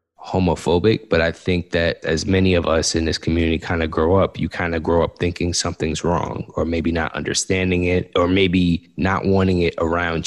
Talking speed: 205 wpm